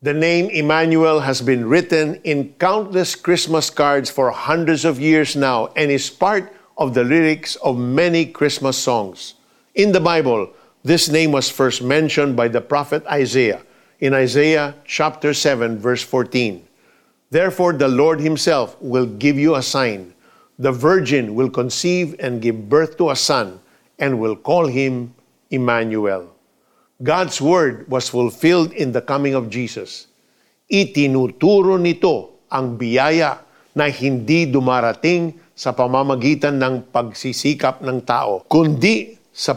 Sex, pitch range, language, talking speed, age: male, 125-160 Hz, Filipino, 140 wpm, 50-69